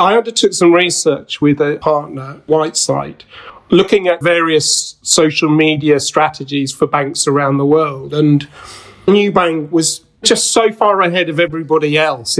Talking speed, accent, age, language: 140 wpm, British, 40-59, English